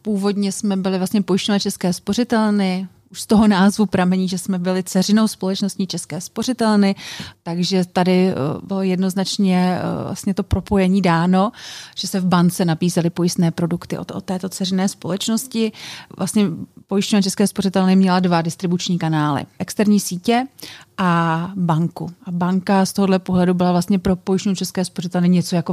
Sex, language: female, Czech